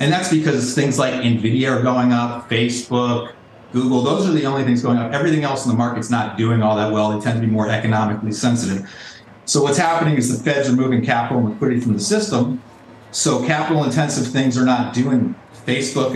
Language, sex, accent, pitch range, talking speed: English, male, American, 115-135 Hz, 210 wpm